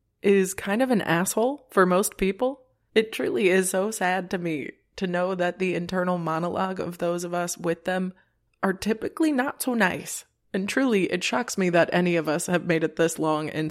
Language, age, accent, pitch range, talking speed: English, 20-39, American, 160-190 Hz, 205 wpm